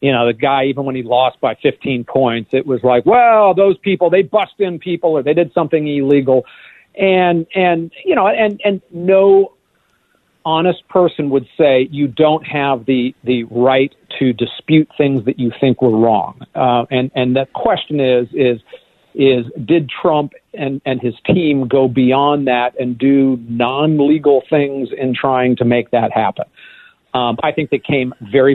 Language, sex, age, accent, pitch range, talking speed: English, male, 50-69, American, 125-160 Hz, 175 wpm